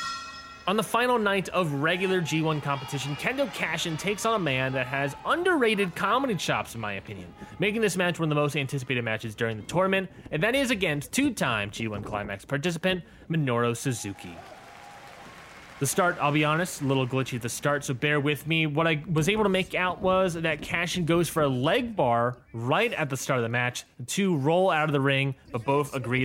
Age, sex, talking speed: 30-49, male, 210 wpm